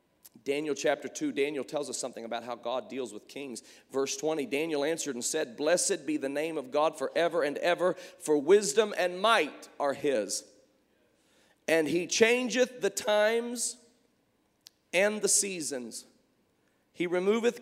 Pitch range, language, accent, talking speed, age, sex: 155-225 Hz, English, American, 150 wpm, 40-59, male